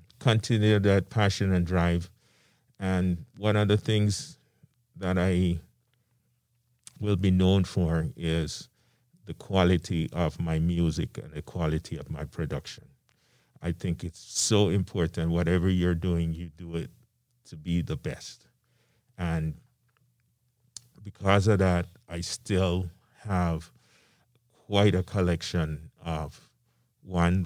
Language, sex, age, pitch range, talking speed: English, male, 50-69, 85-115 Hz, 120 wpm